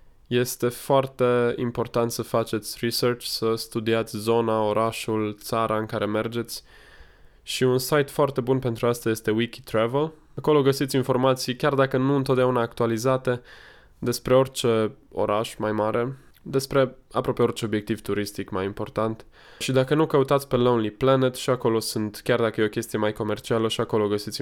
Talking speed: 155 wpm